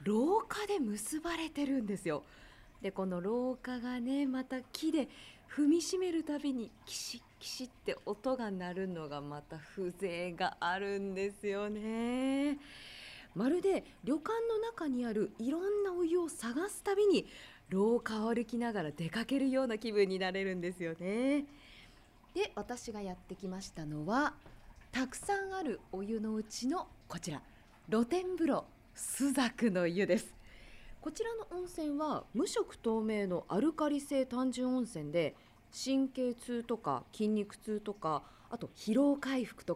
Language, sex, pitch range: Japanese, female, 195-285 Hz